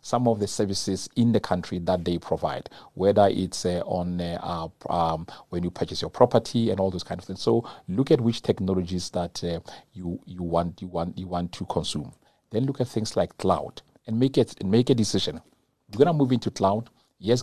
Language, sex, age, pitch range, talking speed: English, male, 40-59, 90-115 Hz, 215 wpm